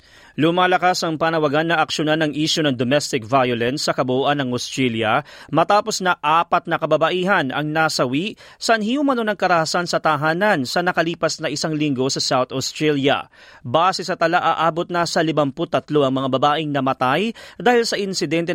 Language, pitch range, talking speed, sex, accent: Filipino, 150-200 Hz, 160 wpm, male, native